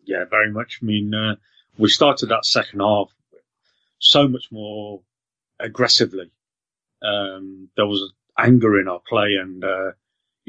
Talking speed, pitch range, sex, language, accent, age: 135 wpm, 95-110 Hz, male, English, British, 30-49